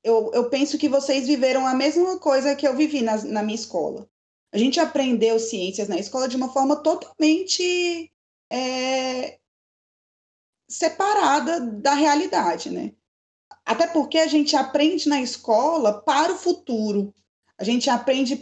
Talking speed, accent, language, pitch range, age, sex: 140 wpm, Brazilian, Portuguese, 215-295 Hz, 20-39, female